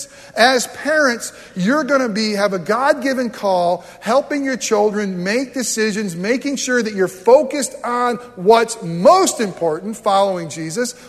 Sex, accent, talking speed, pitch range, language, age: male, American, 145 wpm, 175-255 Hz, English, 40-59